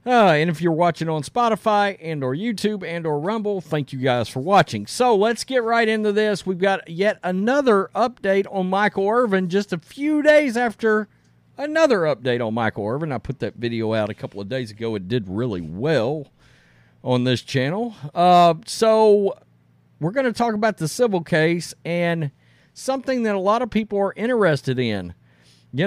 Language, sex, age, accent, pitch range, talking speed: English, male, 40-59, American, 130-205 Hz, 185 wpm